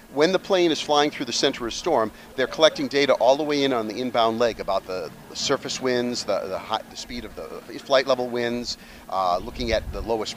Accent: American